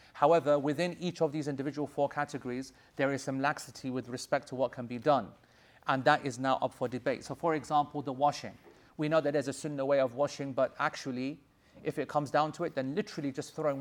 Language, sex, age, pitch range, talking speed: English, male, 30-49, 130-150 Hz, 225 wpm